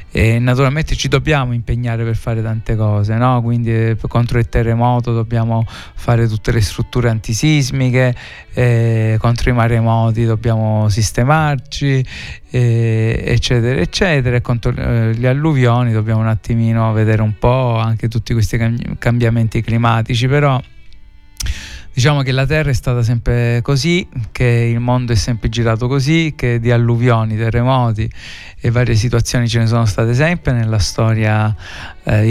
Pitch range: 115-130 Hz